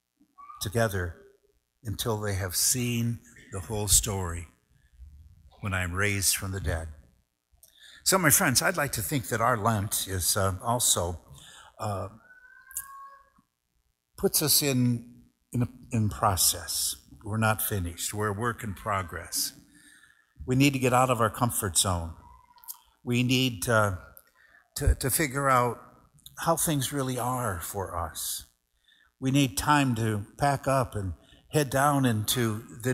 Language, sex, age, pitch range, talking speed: English, male, 60-79, 95-130 Hz, 135 wpm